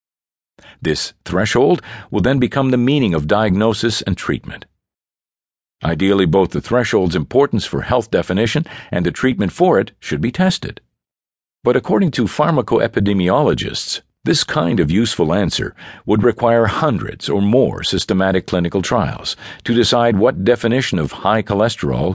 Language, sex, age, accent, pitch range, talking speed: English, male, 50-69, American, 95-120 Hz, 140 wpm